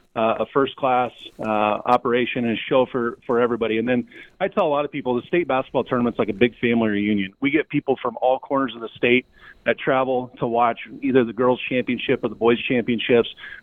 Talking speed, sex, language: 210 wpm, male, English